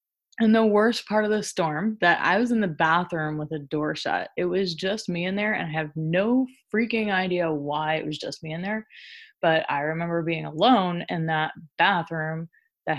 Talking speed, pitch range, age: 210 wpm, 165-220 Hz, 20-39